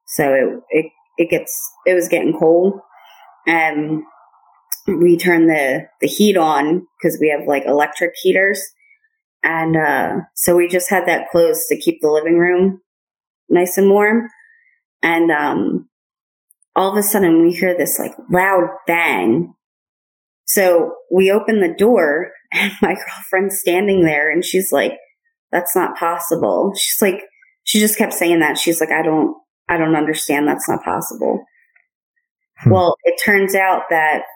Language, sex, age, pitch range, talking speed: English, female, 20-39, 165-215 Hz, 155 wpm